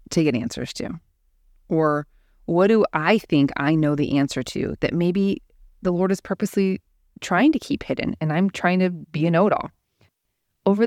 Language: English